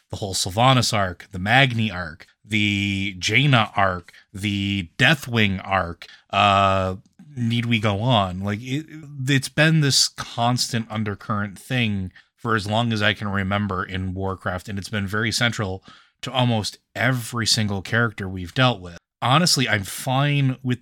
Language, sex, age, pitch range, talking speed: English, male, 30-49, 100-115 Hz, 150 wpm